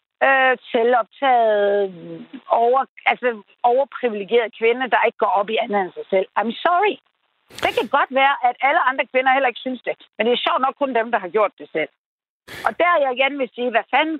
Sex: female